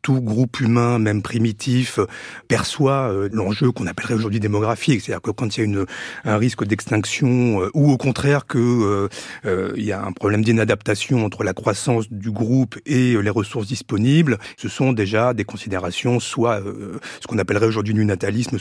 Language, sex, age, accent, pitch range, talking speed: French, male, 40-59, French, 110-140 Hz, 185 wpm